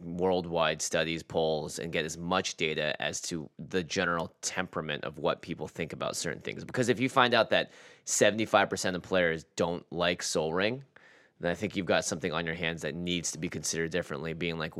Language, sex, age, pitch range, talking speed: English, male, 20-39, 85-110 Hz, 205 wpm